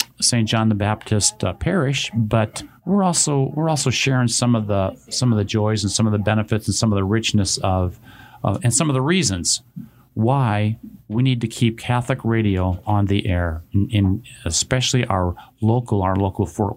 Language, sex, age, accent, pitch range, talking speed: English, male, 50-69, American, 100-125 Hz, 195 wpm